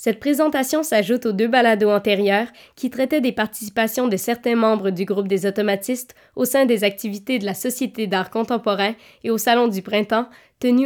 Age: 20-39